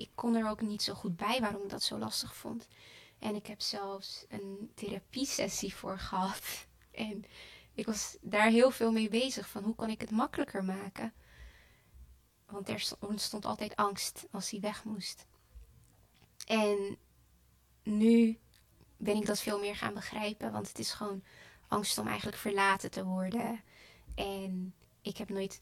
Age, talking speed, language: 20-39, 160 wpm, Dutch